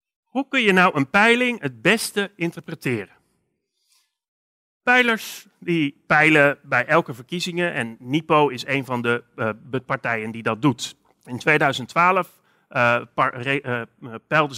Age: 40-59